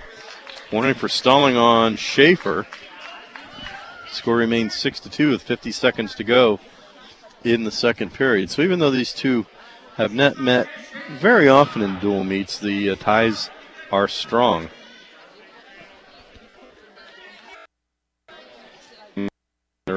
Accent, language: American, English